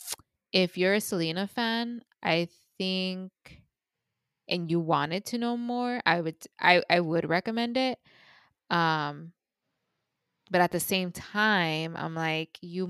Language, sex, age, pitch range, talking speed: English, female, 20-39, 160-195 Hz, 135 wpm